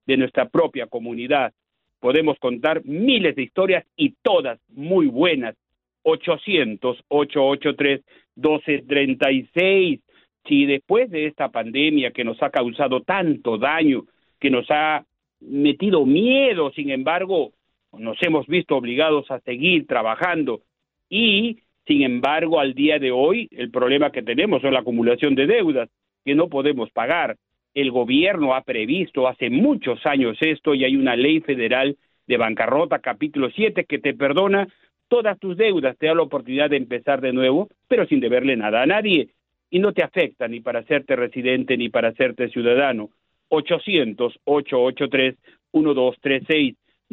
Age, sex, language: 50-69, male, Spanish